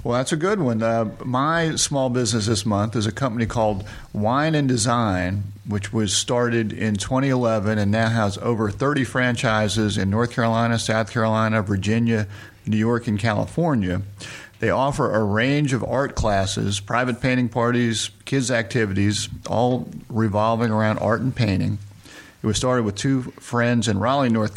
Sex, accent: male, American